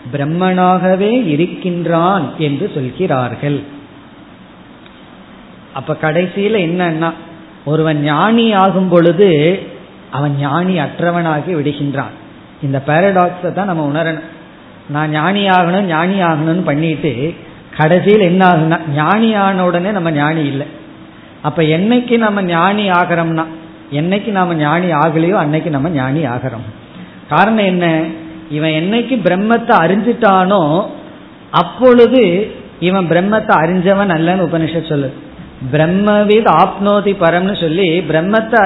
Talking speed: 80 wpm